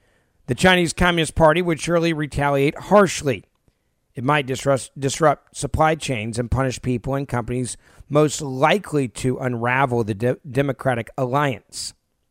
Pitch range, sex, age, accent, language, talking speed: 130-170 Hz, male, 40-59, American, English, 125 wpm